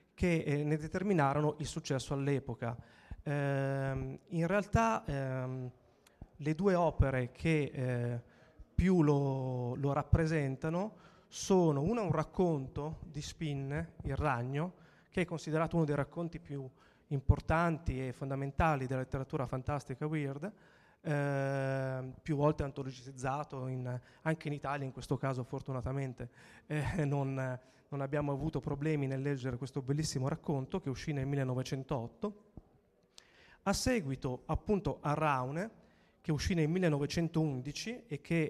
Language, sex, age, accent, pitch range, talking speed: Italian, male, 20-39, native, 135-160 Hz, 120 wpm